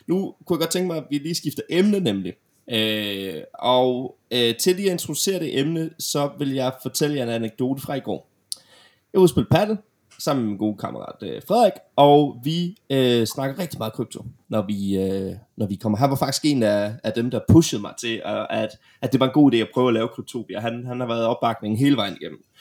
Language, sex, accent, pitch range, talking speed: Danish, male, native, 115-150 Hz, 225 wpm